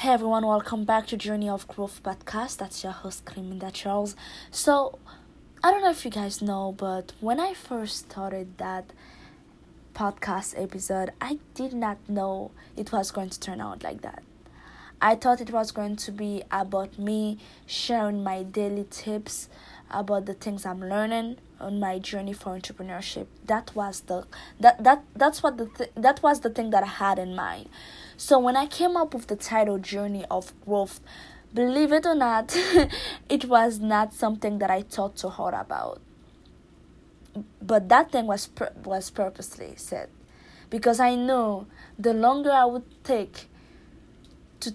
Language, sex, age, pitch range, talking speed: English, female, 20-39, 195-240 Hz, 170 wpm